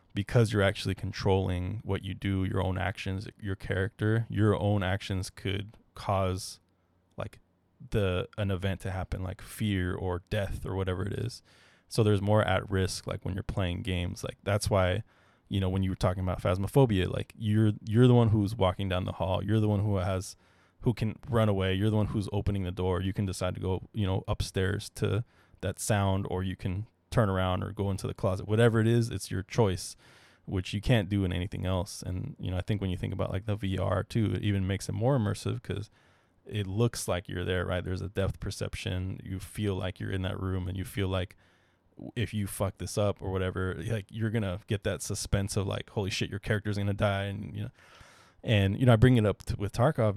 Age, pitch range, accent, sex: 20-39, 95-105 Hz, American, male